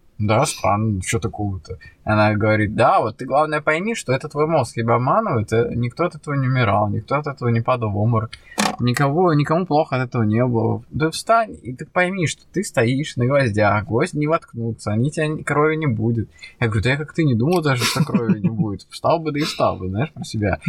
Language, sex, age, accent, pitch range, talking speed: Russian, male, 20-39, native, 110-150 Hz, 220 wpm